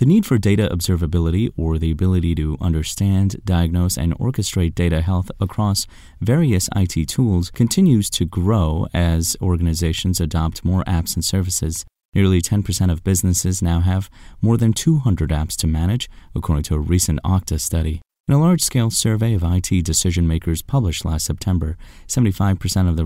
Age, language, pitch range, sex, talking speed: 30-49, English, 80-105 Hz, male, 155 wpm